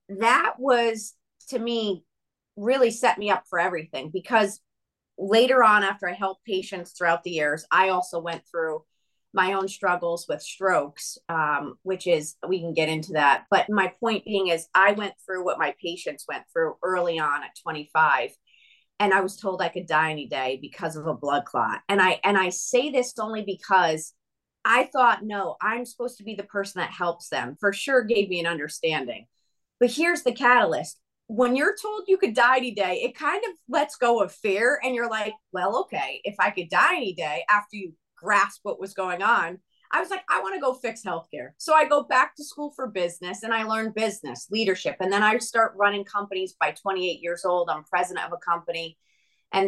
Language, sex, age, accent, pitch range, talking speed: English, female, 30-49, American, 175-230 Hz, 205 wpm